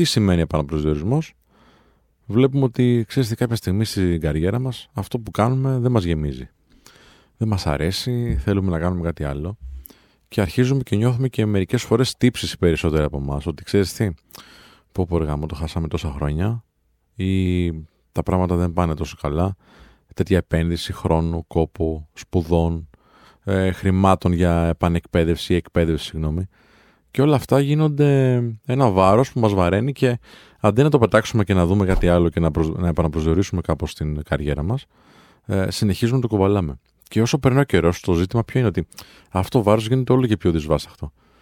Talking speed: 165 wpm